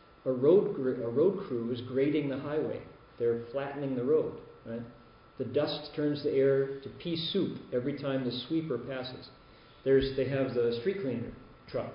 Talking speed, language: 170 wpm, English